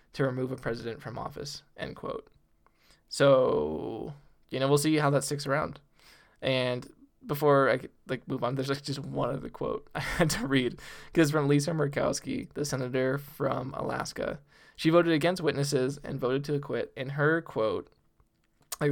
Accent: American